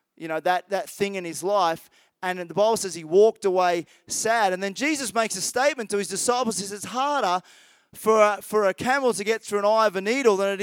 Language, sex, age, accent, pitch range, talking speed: English, male, 20-39, Australian, 185-240 Hz, 245 wpm